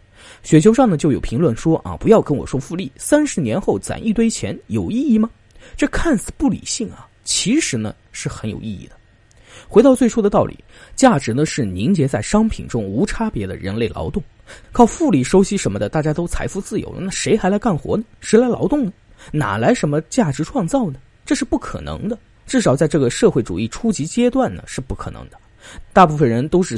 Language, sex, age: Chinese, male, 20-39